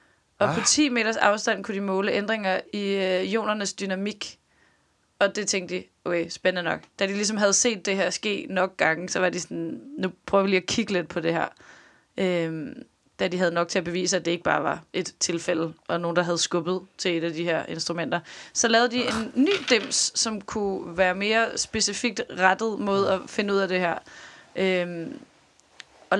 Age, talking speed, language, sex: 20-39, 210 wpm, Danish, female